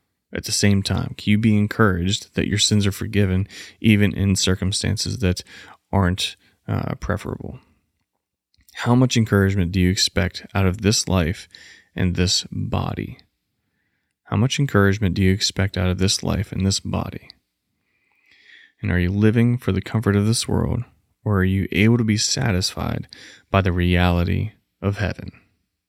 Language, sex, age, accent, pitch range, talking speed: English, male, 20-39, American, 95-110 Hz, 160 wpm